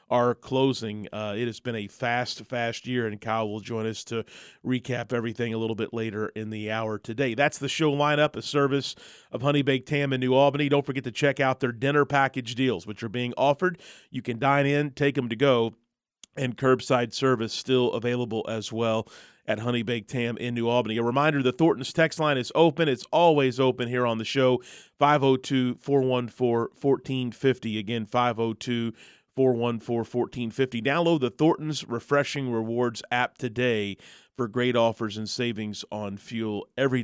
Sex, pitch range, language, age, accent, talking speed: male, 115-135 Hz, English, 30-49, American, 180 wpm